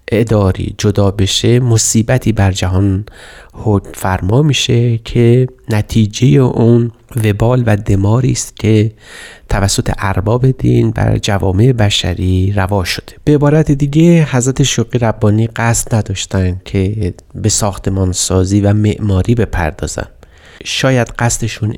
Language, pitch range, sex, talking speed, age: Persian, 95-115 Hz, male, 115 wpm, 30-49